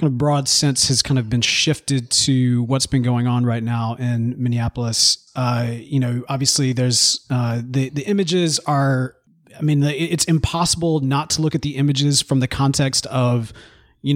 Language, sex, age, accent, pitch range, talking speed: English, male, 30-49, American, 120-145 Hz, 175 wpm